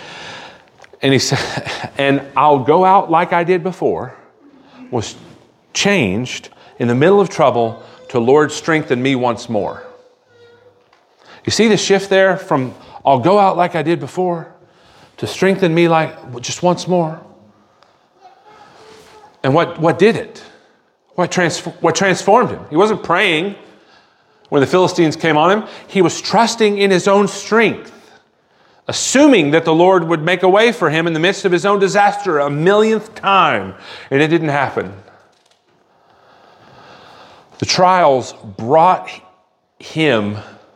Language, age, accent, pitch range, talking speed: English, 40-59, American, 125-195 Hz, 145 wpm